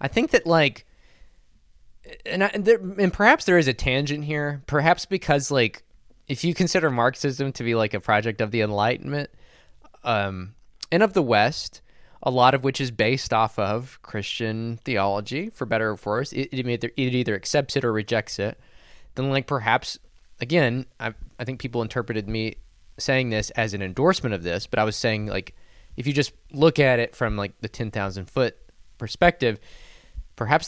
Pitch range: 105-140 Hz